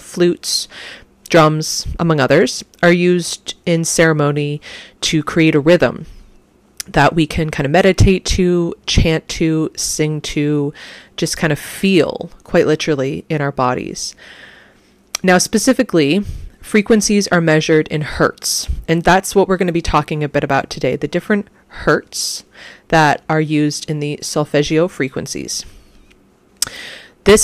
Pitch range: 150-180 Hz